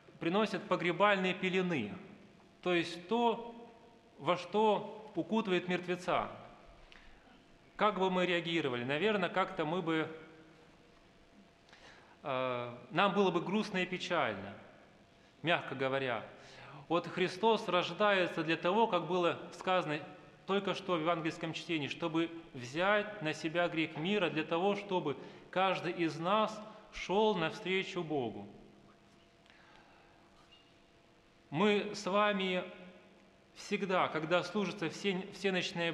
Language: Russian